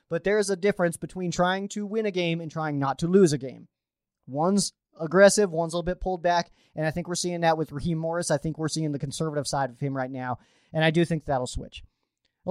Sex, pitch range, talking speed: male, 155-200 Hz, 255 wpm